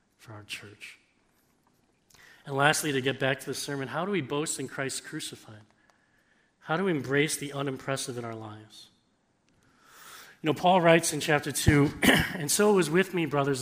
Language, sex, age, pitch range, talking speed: English, male, 40-59, 125-150 Hz, 180 wpm